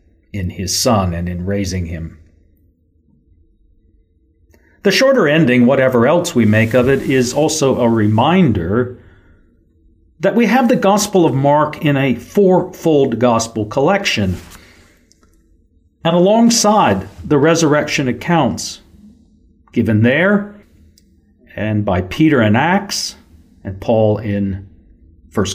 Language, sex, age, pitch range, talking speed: English, male, 50-69, 85-130 Hz, 115 wpm